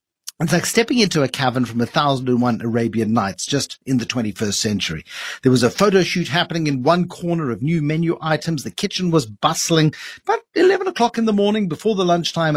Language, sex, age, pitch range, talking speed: English, male, 50-69, 120-160 Hz, 200 wpm